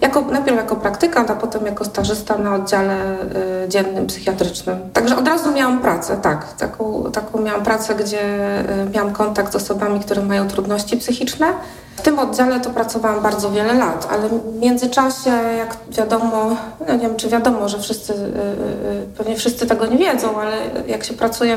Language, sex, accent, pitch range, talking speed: Polish, female, native, 210-245 Hz, 165 wpm